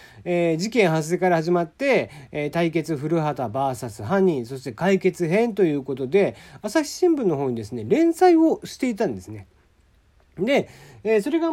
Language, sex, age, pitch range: Japanese, male, 40-59, 135-195 Hz